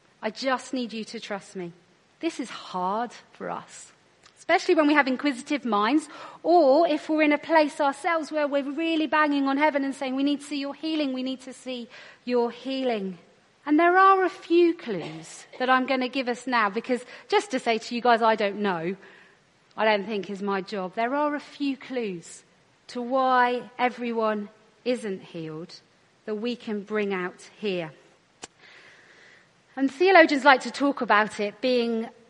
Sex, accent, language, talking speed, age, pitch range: female, British, English, 180 wpm, 40-59, 215-290 Hz